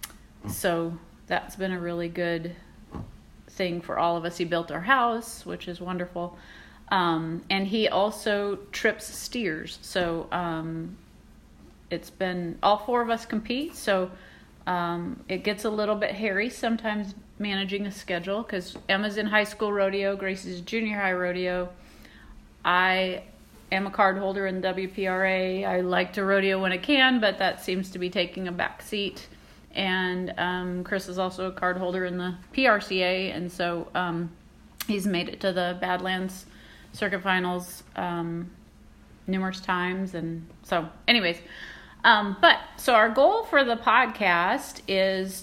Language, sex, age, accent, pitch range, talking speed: English, female, 30-49, American, 175-205 Hz, 150 wpm